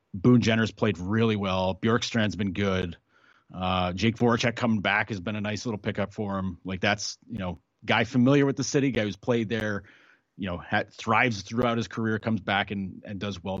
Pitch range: 95-125 Hz